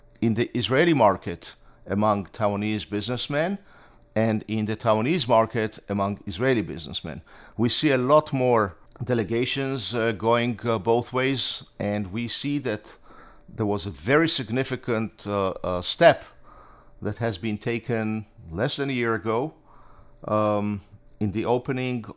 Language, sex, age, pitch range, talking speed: German, male, 50-69, 100-120 Hz, 140 wpm